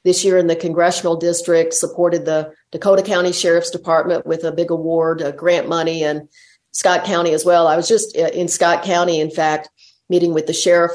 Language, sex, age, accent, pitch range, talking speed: English, female, 50-69, American, 165-200 Hz, 195 wpm